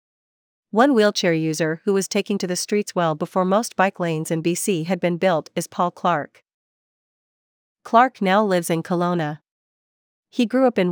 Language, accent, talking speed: English, American, 170 wpm